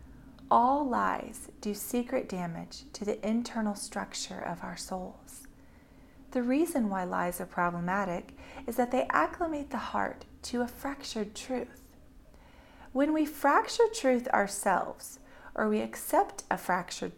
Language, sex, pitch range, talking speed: English, female, 205-255 Hz, 135 wpm